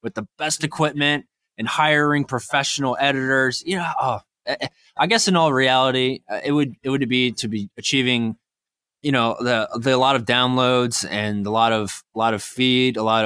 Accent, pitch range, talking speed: American, 110-135 Hz, 185 wpm